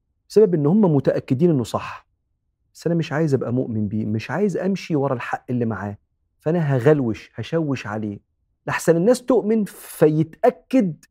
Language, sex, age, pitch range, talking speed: Arabic, male, 40-59, 115-160 Hz, 150 wpm